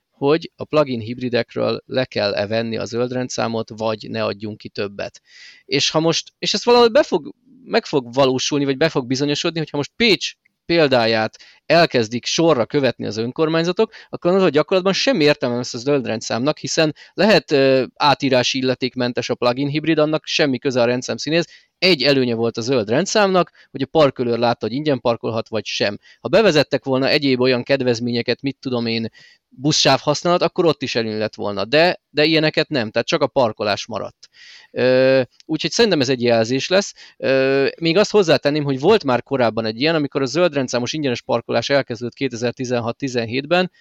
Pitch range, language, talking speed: 120-160 Hz, Hungarian, 165 wpm